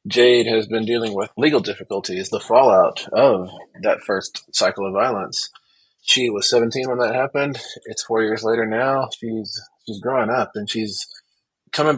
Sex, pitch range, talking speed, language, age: male, 100-120 Hz, 165 wpm, English, 20-39